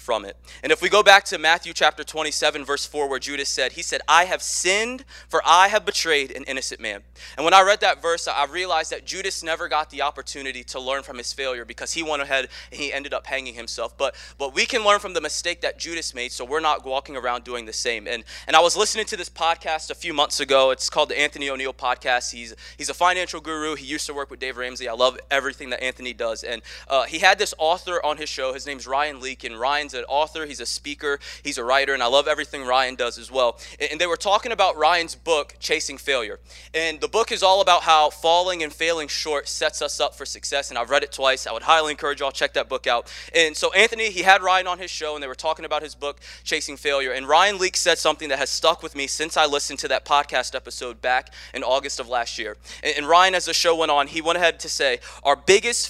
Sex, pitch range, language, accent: male, 135-175 Hz, English, American